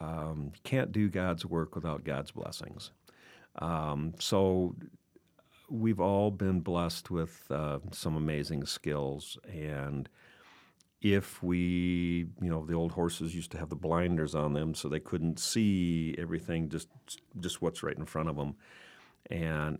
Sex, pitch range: male, 75-90 Hz